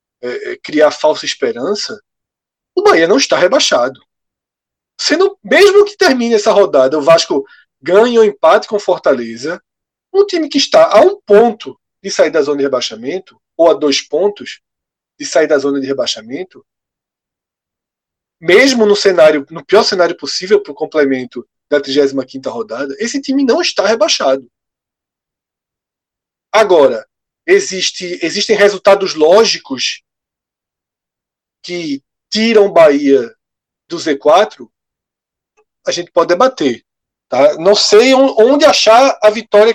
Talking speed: 130 wpm